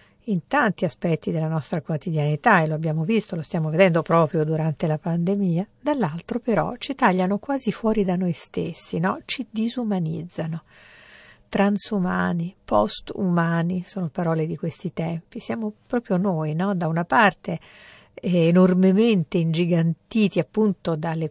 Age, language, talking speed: 50-69, Italian, 135 wpm